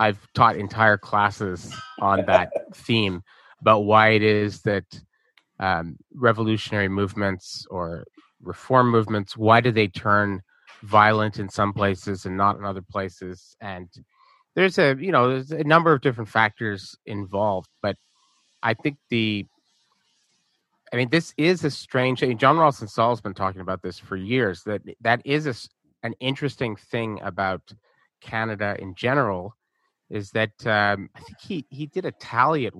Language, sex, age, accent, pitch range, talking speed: English, male, 30-49, American, 100-125 Hz, 160 wpm